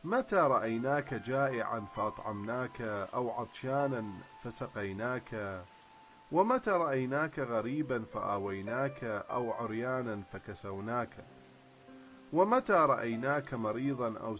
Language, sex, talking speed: English, male, 75 wpm